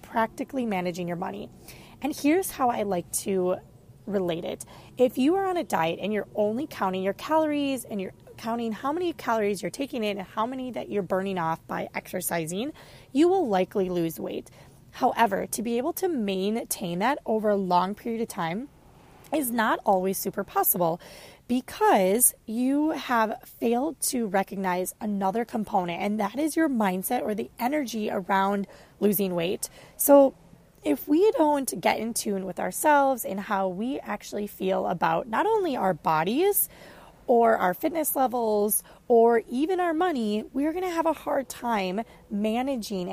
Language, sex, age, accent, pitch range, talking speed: English, female, 20-39, American, 190-275 Hz, 165 wpm